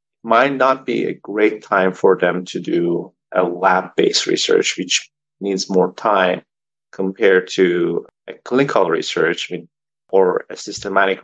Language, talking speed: English, 135 wpm